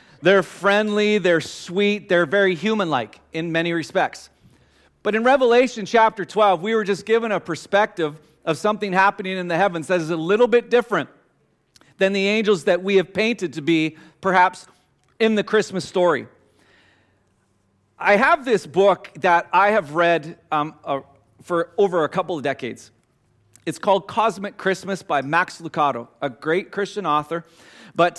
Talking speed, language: 160 wpm, English